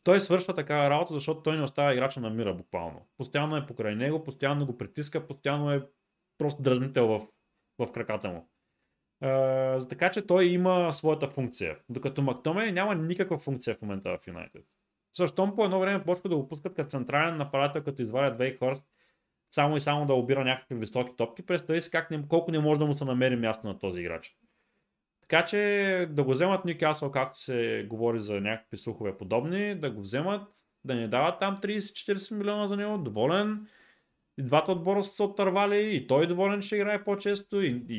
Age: 20-39